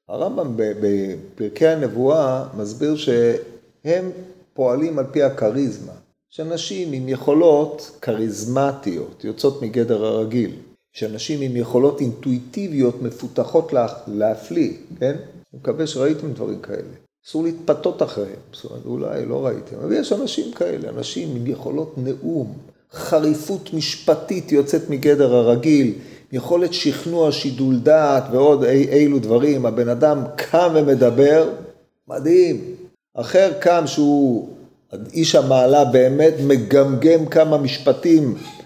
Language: Hebrew